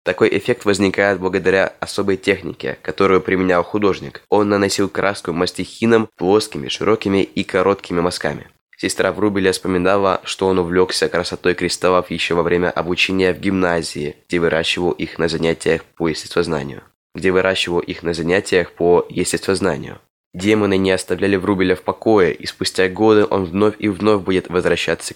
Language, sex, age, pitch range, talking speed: Russian, male, 20-39, 90-100 Hz, 145 wpm